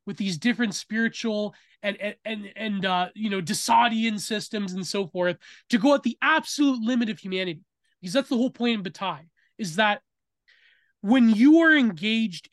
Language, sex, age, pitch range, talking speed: English, male, 20-39, 190-240 Hz, 170 wpm